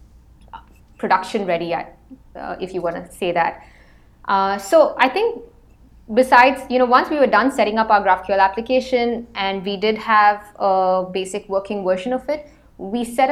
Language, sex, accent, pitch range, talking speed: English, female, Indian, 200-250 Hz, 160 wpm